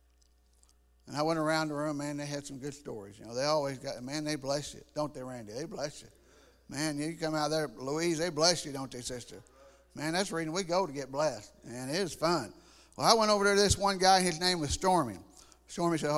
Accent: American